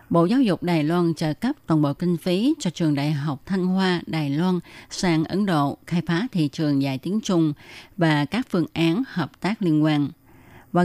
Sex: female